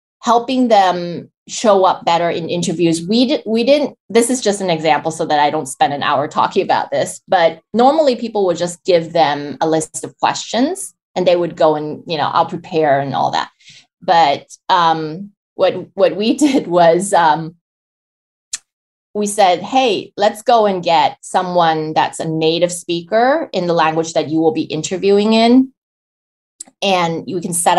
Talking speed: 175 wpm